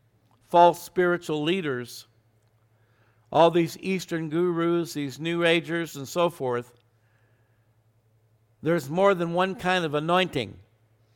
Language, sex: English, male